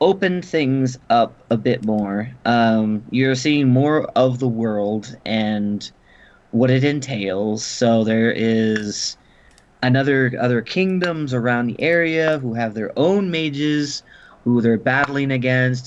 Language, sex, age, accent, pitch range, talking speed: English, male, 20-39, American, 115-130 Hz, 130 wpm